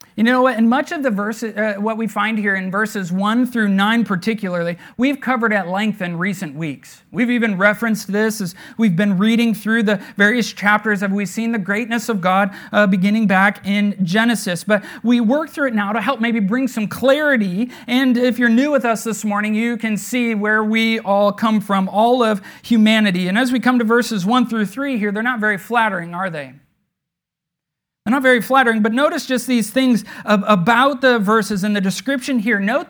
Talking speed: 210 wpm